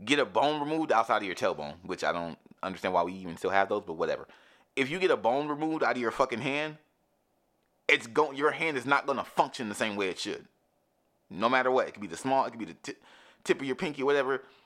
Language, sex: English, male